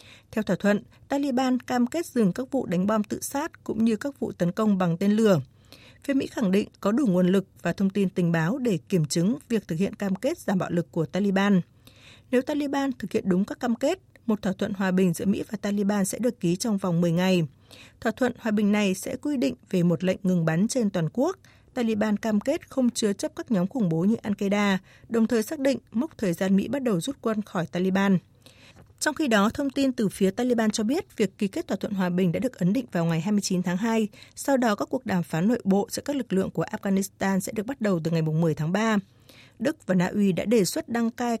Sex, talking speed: female, 250 wpm